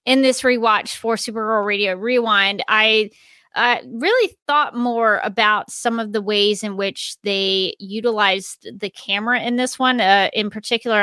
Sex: female